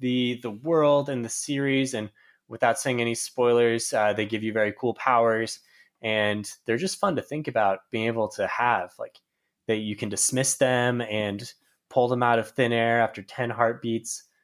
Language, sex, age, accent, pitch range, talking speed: English, male, 20-39, American, 115-165 Hz, 185 wpm